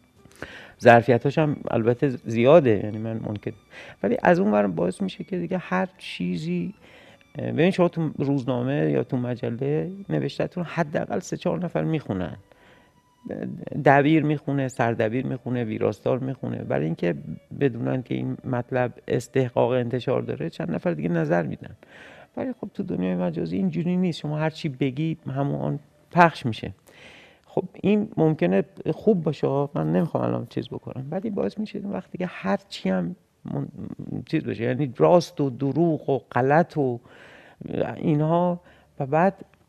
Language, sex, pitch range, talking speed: Persian, male, 115-165 Hz, 145 wpm